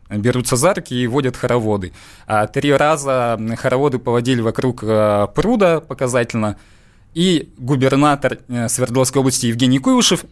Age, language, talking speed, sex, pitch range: 20-39, Russian, 110 wpm, male, 110-140 Hz